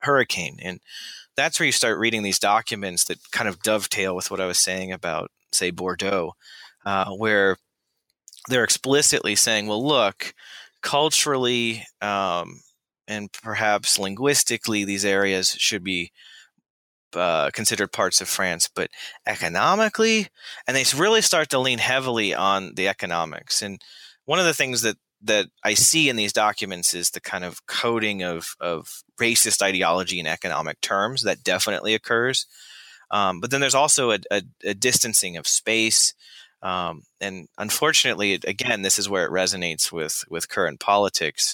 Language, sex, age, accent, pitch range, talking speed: English, male, 30-49, American, 95-120 Hz, 150 wpm